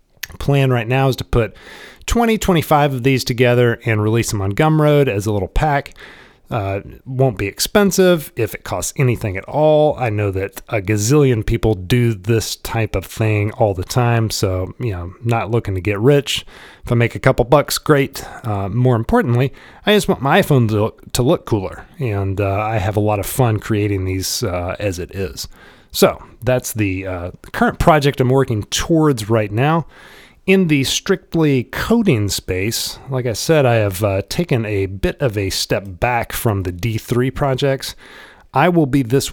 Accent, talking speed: American, 185 wpm